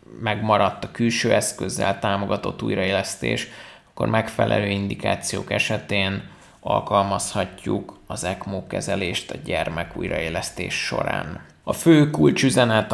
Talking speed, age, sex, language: 95 wpm, 20-39, male, Hungarian